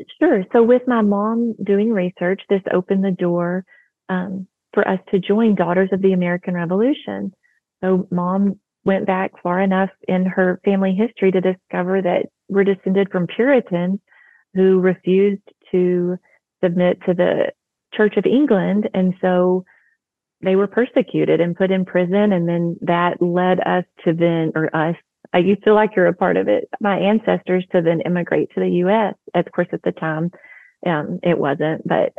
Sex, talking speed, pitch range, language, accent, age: female, 170 wpm, 180-205 Hz, English, American, 30-49